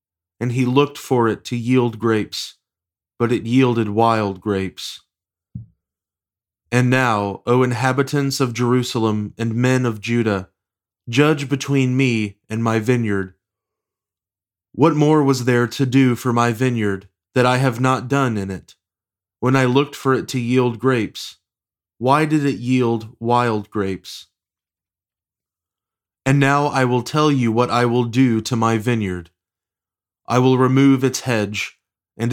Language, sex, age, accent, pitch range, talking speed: English, male, 20-39, American, 100-130 Hz, 145 wpm